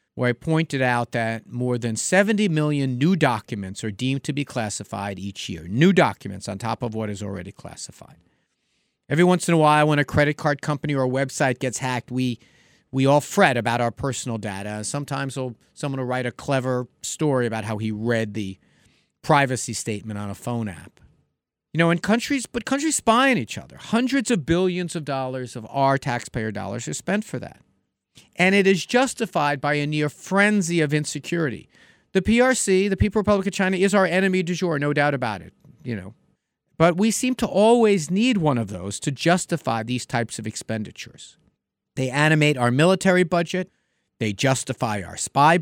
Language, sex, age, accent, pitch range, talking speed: English, male, 50-69, American, 115-165 Hz, 190 wpm